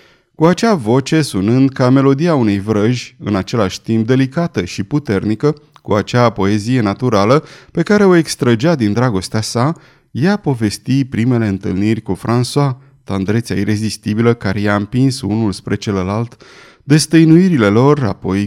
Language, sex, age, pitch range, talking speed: Romanian, male, 30-49, 105-145 Hz, 135 wpm